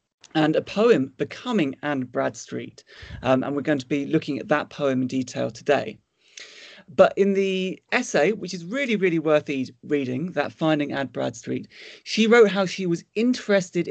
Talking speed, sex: 170 wpm, male